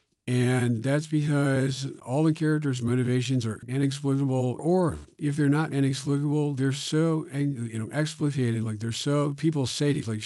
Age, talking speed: 50-69, 150 wpm